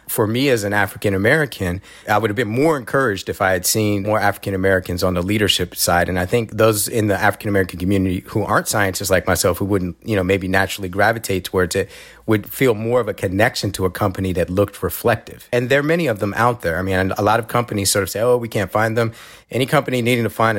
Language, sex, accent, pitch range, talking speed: English, male, American, 95-115 Hz, 240 wpm